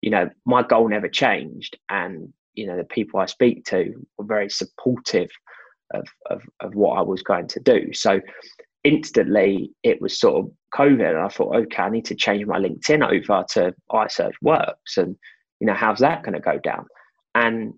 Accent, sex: British, male